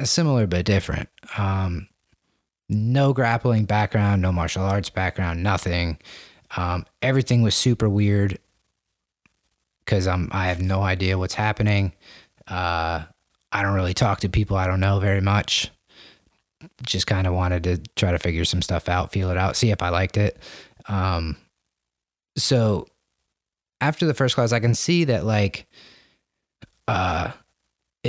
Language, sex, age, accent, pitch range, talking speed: English, male, 30-49, American, 90-115 Hz, 145 wpm